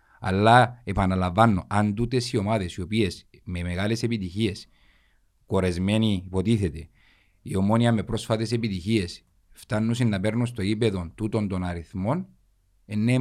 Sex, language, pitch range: male, Greek, 95-120 Hz